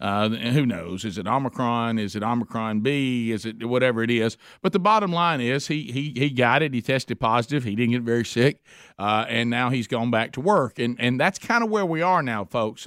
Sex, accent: male, American